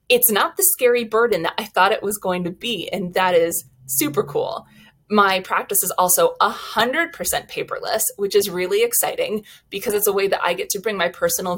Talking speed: 210 wpm